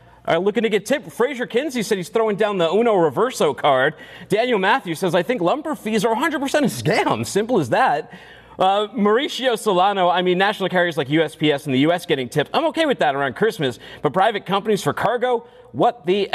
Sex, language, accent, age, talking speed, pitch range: male, English, American, 40-59, 205 wpm, 155-235 Hz